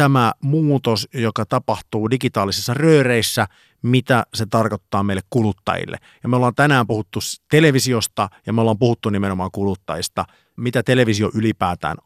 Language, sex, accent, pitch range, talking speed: Finnish, male, native, 100-125 Hz, 130 wpm